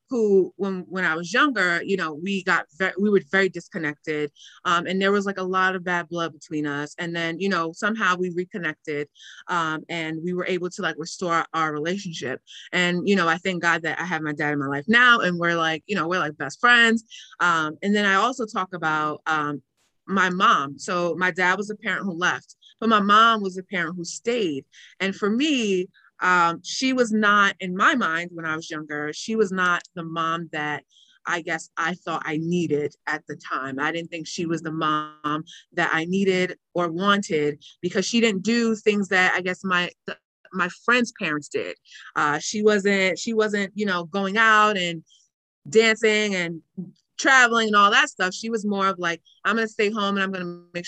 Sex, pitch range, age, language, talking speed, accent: female, 160-200 Hz, 30-49, English, 210 wpm, American